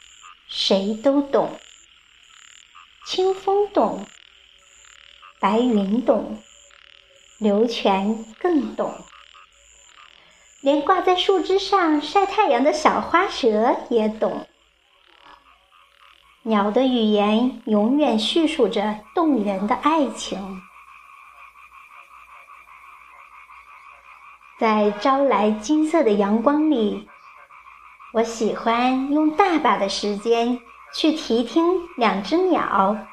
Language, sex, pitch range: Chinese, male, 225-360 Hz